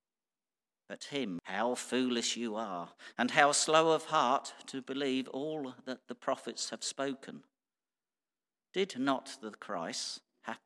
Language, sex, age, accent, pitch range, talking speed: English, male, 50-69, British, 110-145 Hz, 135 wpm